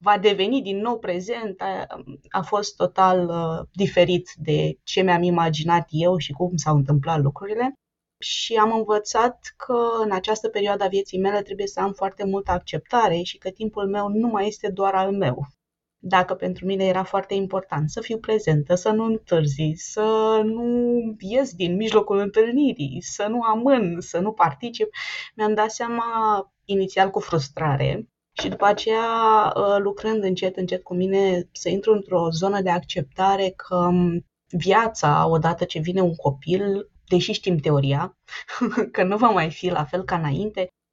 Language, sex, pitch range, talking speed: Romanian, female, 175-210 Hz, 160 wpm